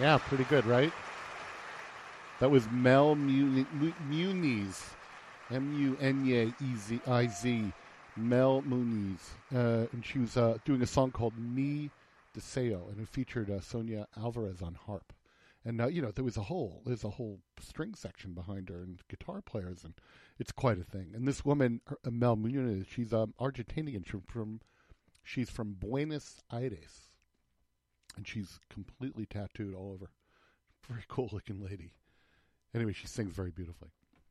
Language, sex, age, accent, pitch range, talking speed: English, male, 50-69, American, 100-125 Hz, 155 wpm